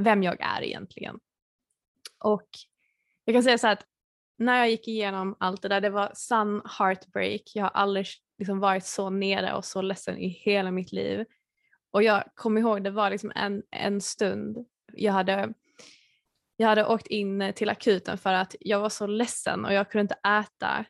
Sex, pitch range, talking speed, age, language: female, 195-220 Hz, 185 wpm, 20-39, Swedish